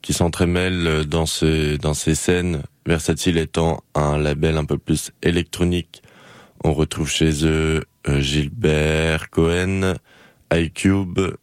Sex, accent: male, French